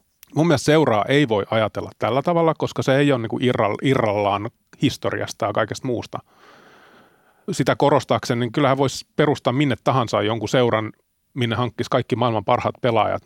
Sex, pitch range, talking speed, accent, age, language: male, 110-135 Hz, 155 wpm, native, 30-49, Finnish